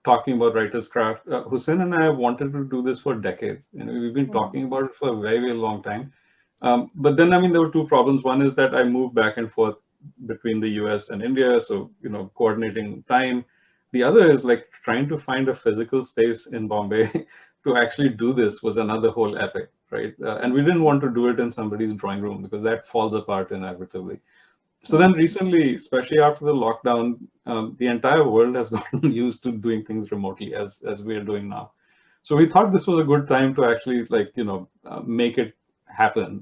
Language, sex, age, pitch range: English, male, 30-49, 110-140 Hz